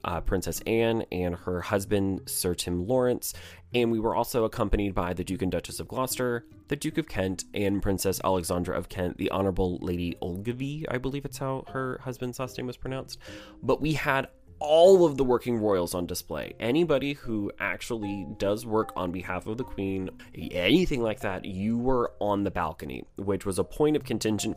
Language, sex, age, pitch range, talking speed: English, male, 20-39, 90-115 Hz, 190 wpm